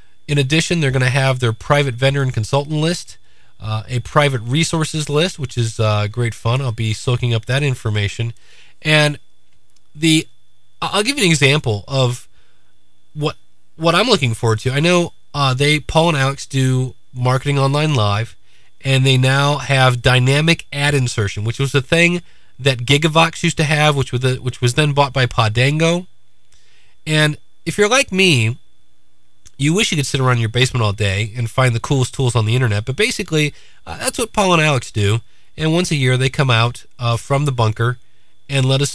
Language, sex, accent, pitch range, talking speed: English, male, American, 115-145 Hz, 190 wpm